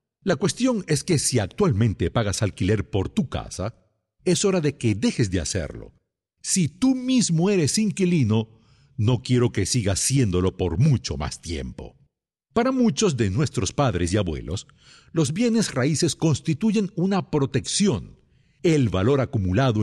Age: 60-79